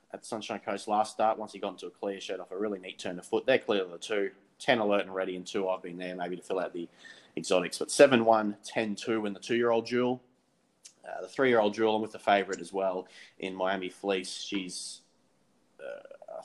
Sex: male